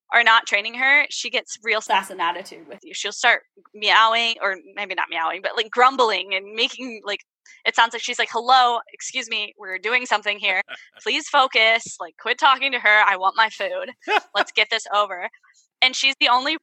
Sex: female